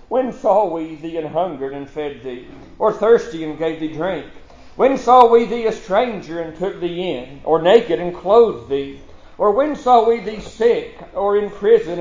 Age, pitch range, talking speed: 50-69, 155-200 Hz, 190 wpm